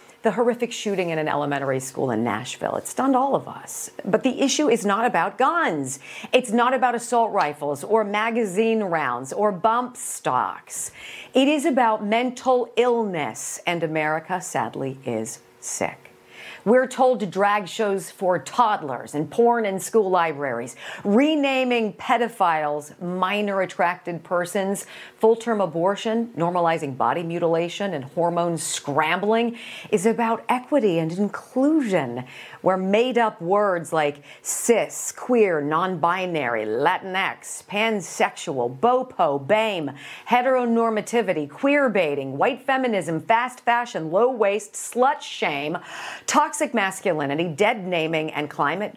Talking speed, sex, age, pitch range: 125 wpm, female, 40-59, 155-230 Hz